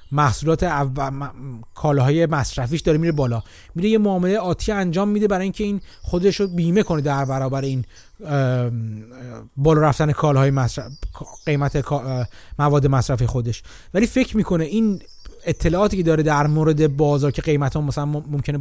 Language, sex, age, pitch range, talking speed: Persian, male, 30-49, 145-190 Hz, 160 wpm